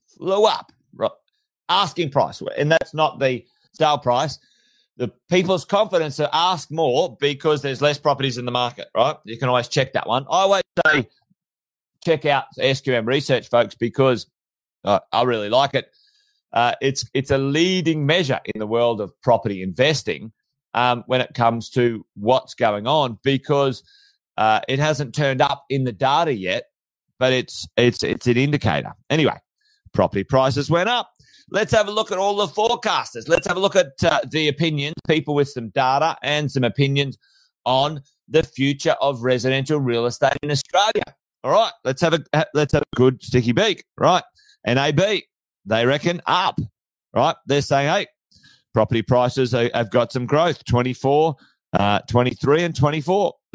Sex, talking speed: male, 170 wpm